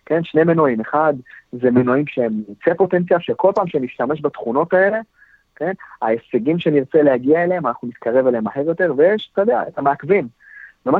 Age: 30-49